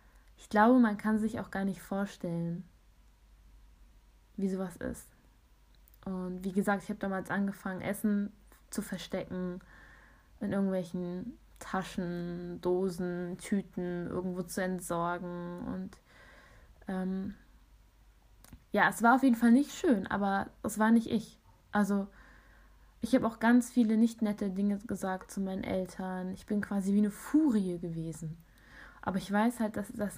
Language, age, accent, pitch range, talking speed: German, 10-29, German, 185-225 Hz, 140 wpm